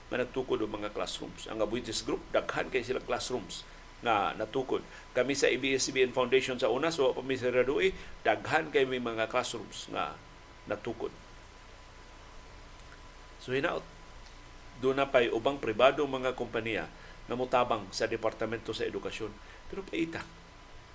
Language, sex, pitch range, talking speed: Filipino, male, 130-180 Hz, 125 wpm